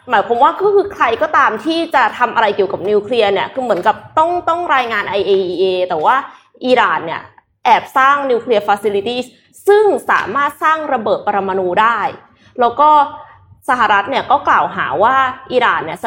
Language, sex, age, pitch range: Thai, female, 20-39, 215-295 Hz